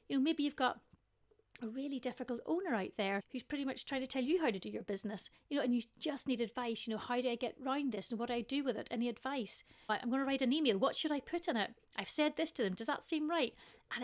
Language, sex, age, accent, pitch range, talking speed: English, female, 30-49, British, 210-265 Hz, 290 wpm